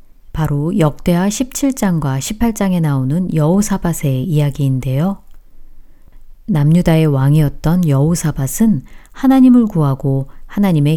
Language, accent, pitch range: Korean, native, 140-190 Hz